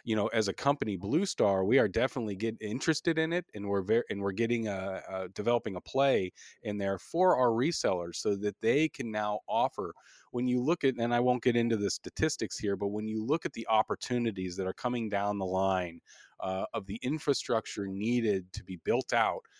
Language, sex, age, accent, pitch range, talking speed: English, male, 30-49, American, 100-120 Hz, 215 wpm